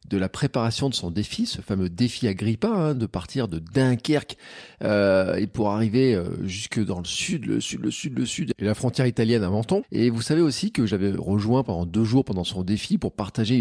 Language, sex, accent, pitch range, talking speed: French, male, French, 100-130 Hz, 225 wpm